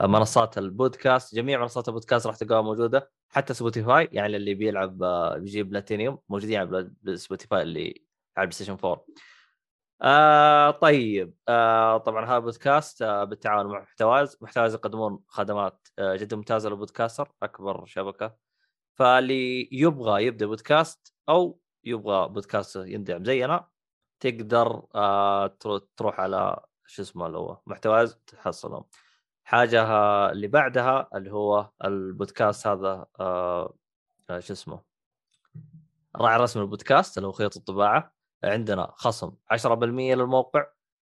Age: 20-39